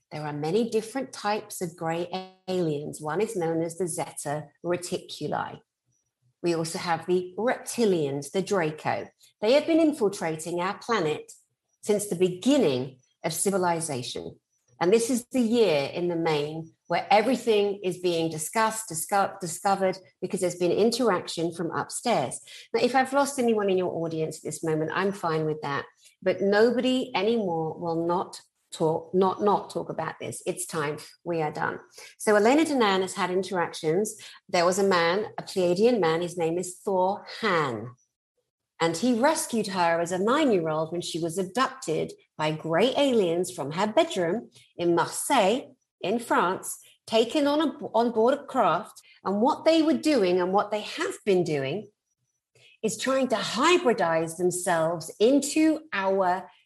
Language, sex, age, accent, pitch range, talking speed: English, female, 50-69, British, 165-220 Hz, 155 wpm